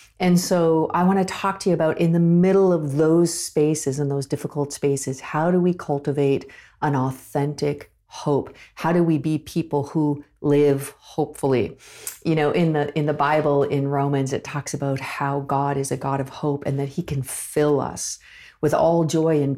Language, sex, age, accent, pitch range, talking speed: English, female, 50-69, American, 140-160 Hz, 195 wpm